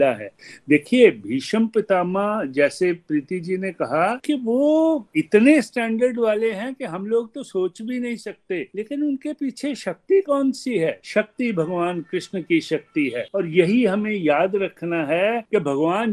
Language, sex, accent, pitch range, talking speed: Hindi, male, native, 150-230 Hz, 160 wpm